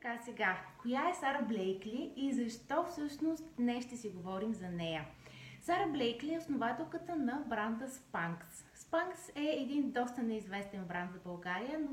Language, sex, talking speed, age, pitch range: Bulgarian, female, 155 wpm, 20-39, 210-275 Hz